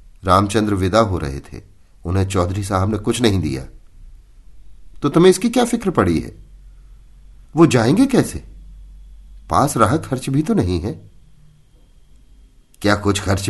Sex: male